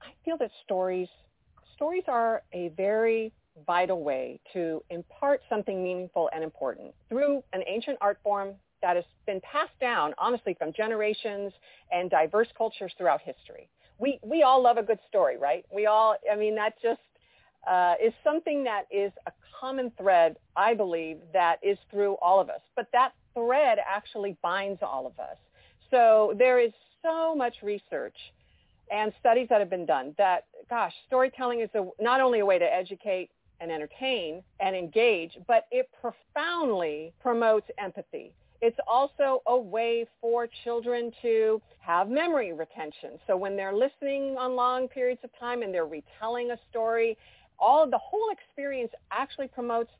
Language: English